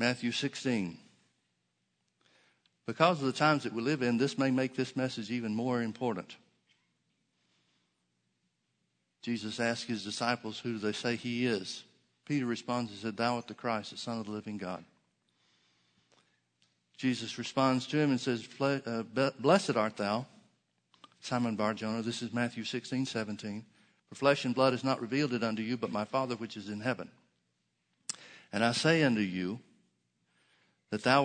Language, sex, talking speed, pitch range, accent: English, male, 155 wpm, 105-130 Hz, American